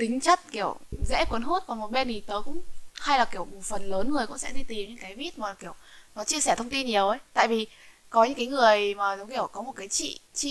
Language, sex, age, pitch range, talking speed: Vietnamese, female, 10-29, 205-270 Hz, 280 wpm